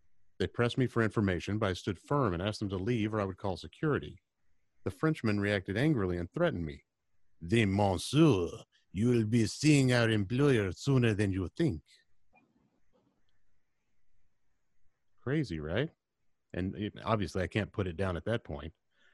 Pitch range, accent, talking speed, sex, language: 90-125 Hz, American, 155 wpm, male, English